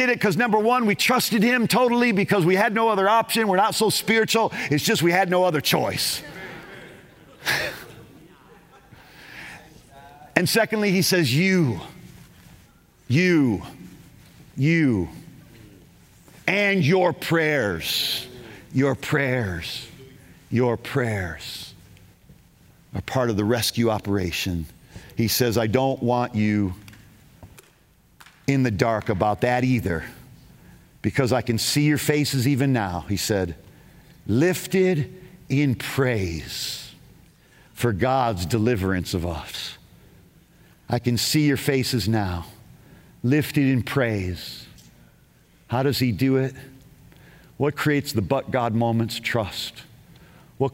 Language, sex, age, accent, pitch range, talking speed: English, male, 50-69, American, 115-155 Hz, 115 wpm